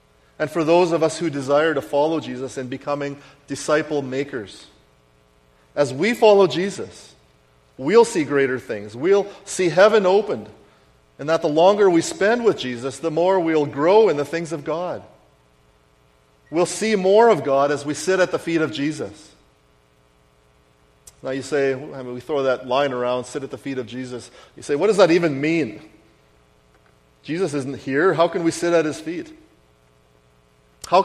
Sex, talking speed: male, 170 wpm